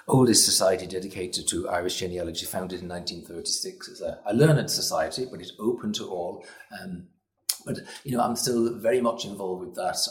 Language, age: English, 40-59